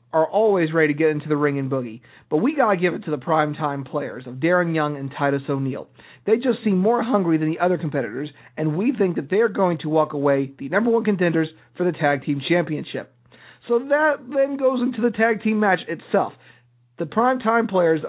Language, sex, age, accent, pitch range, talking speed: English, male, 40-59, American, 145-195 Hz, 220 wpm